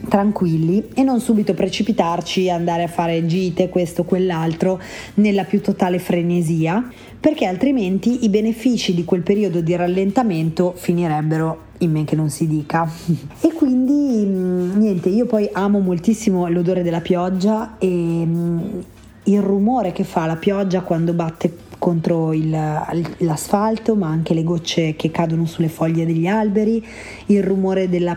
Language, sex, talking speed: Italian, female, 140 wpm